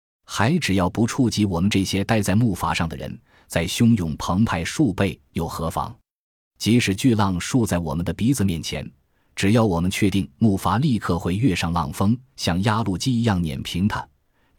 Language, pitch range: Chinese, 85-115 Hz